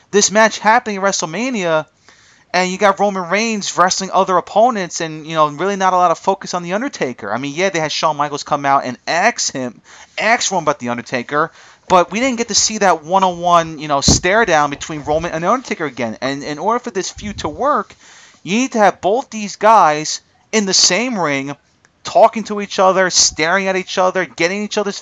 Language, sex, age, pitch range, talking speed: English, male, 30-49, 165-210 Hz, 220 wpm